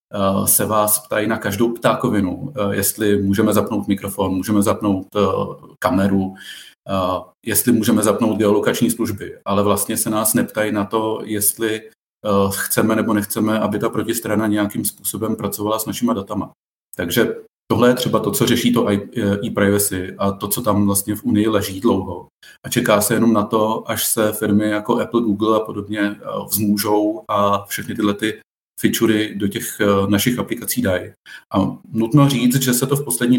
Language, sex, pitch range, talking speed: Czech, male, 100-115 Hz, 165 wpm